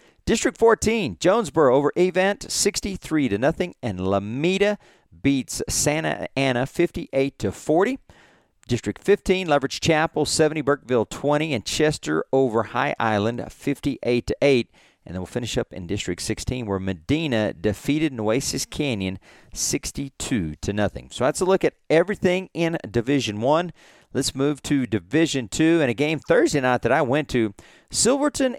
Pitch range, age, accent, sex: 110-155 Hz, 40-59, American, male